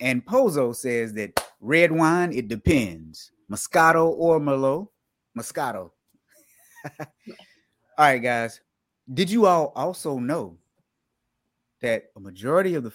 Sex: male